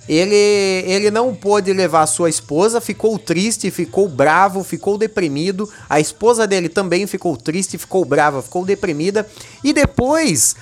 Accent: Brazilian